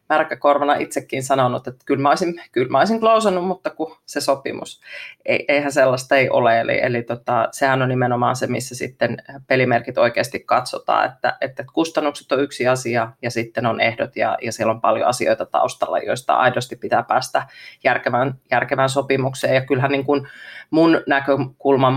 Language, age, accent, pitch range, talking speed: Finnish, 30-49, native, 125-145 Hz, 165 wpm